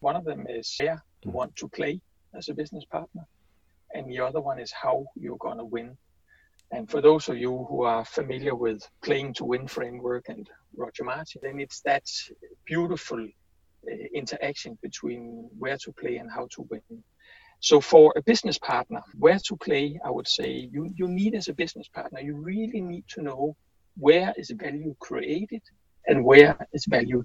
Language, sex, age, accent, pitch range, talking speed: English, male, 60-79, Danish, 125-195 Hz, 185 wpm